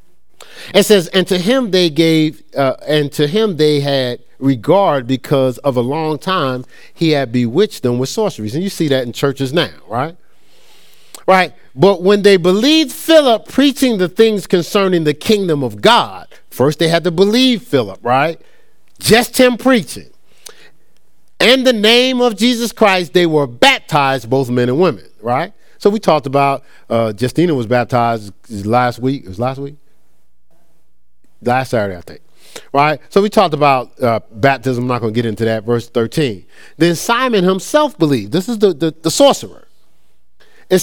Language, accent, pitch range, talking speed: English, American, 130-215 Hz, 170 wpm